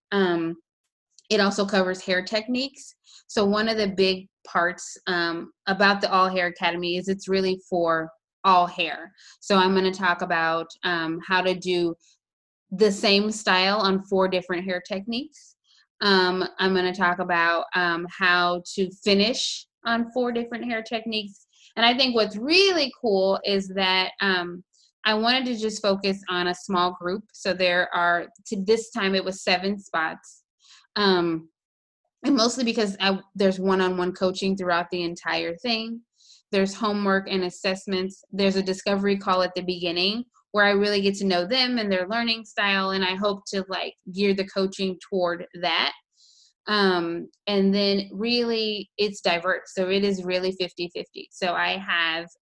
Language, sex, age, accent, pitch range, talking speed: English, female, 20-39, American, 180-205 Hz, 165 wpm